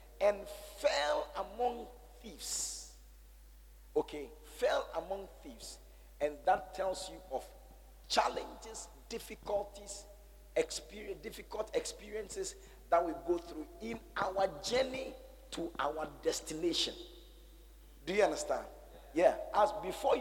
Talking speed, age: 100 wpm, 50-69